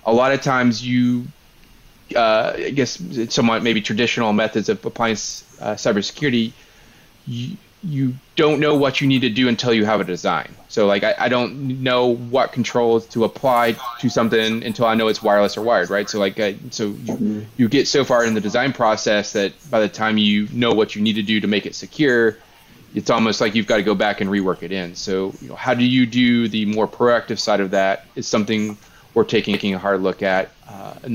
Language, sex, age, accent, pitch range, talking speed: English, male, 20-39, American, 105-125 Hz, 220 wpm